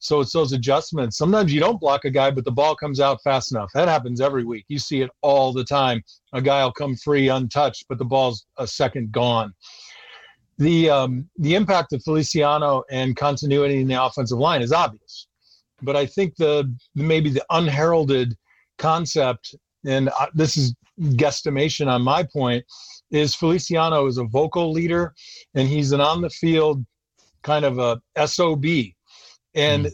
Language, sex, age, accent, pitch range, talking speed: English, male, 50-69, American, 130-160 Hz, 165 wpm